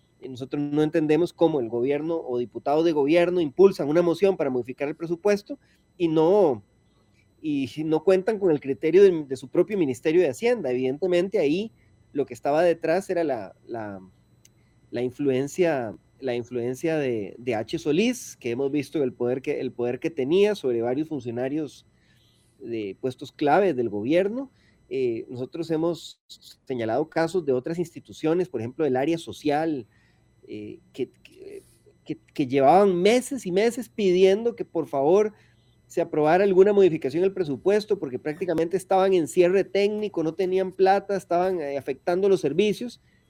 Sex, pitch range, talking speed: male, 135-195 Hz, 155 wpm